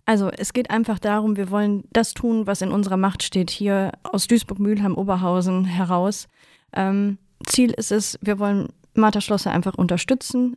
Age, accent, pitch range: 20-39, German, 185-205 Hz